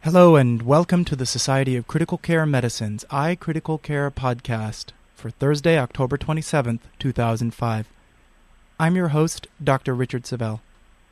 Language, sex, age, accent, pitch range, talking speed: English, male, 30-49, American, 120-160 Hz, 150 wpm